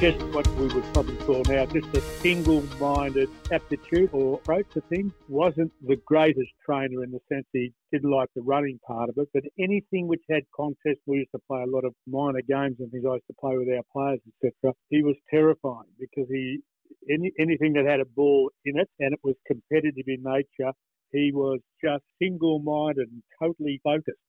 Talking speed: 200 wpm